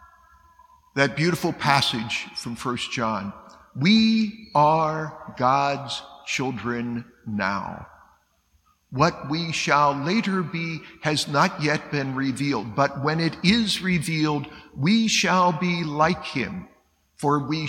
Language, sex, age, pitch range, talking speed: English, male, 50-69, 120-170 Hz, 110 wpm